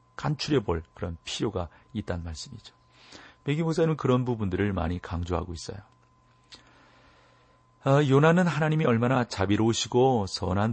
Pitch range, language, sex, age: 85-115 Hz, Korean, male, 40-59